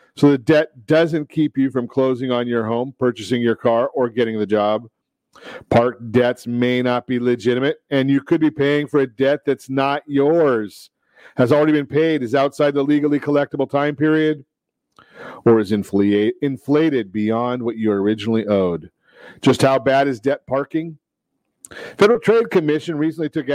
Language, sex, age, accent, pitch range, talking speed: English, male, 40-59, American, 120-150 Hz, 165 wpm